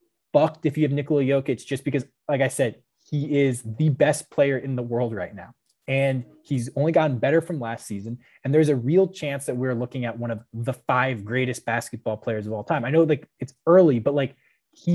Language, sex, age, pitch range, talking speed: English, male, 20-39, 120-150 Hz, 225 wpm